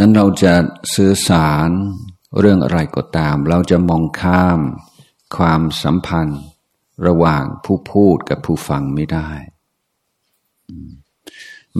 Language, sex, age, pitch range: Thai, male, 60-79, 80-95 Hz